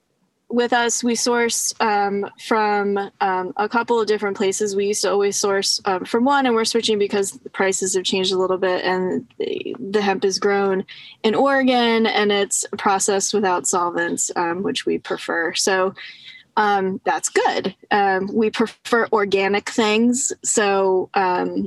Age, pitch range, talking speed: 10-29, 190-235 Hz, 165 wpm